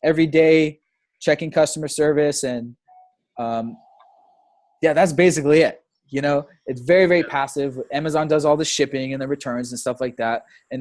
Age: 20-39